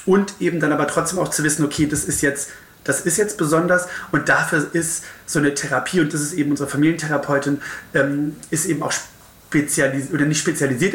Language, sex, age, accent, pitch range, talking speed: German, male, 30-49, German, 145-170 Hz, 195 wpm